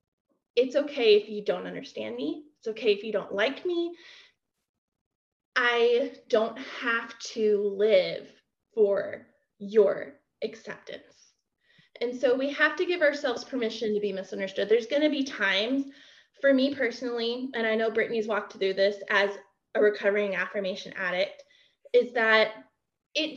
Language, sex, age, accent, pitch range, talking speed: English, female, 20-39, American, 215-300 Hz, 145 wpm